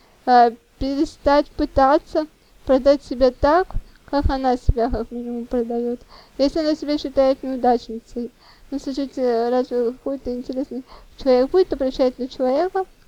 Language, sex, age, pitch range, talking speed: Russian, female, 20-39, 245-295 Hz, 120 wpm